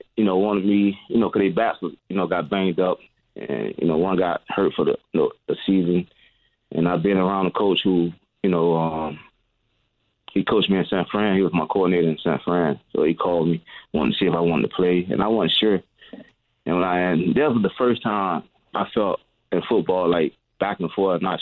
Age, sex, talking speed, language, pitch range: 20-39, male, 235 wpm, English, 90-110 Hz